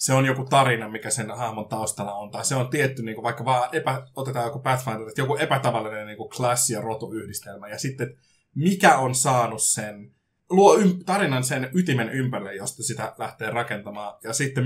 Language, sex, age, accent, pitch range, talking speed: Finnish, male, 20-39, native, 110-135 Hz, 185 wpm